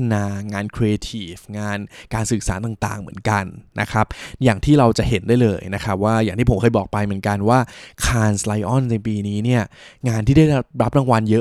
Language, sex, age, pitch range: Thai, male, 20-39, 100-125 Hz